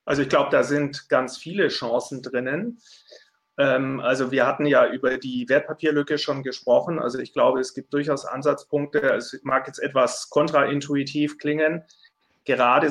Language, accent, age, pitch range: German, German, 30-49, 125-150 Hz